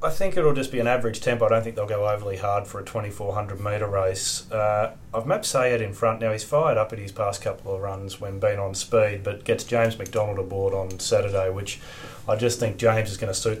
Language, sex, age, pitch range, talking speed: English, male, 30-49, 100-115 Hz, 250 wpm